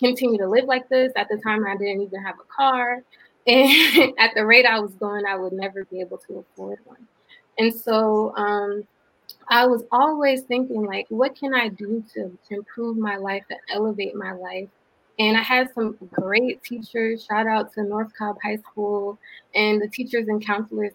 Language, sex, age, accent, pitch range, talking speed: English, female, 20-39, American, 200-225 Hz, 195 wpm